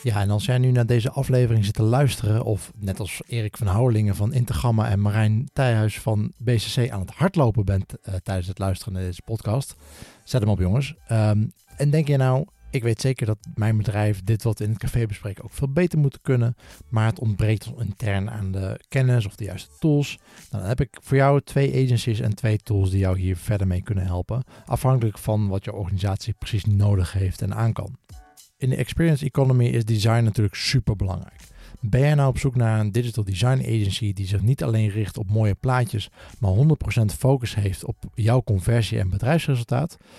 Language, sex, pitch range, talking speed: Dutch, male, 100-125 Hz, 205 wpm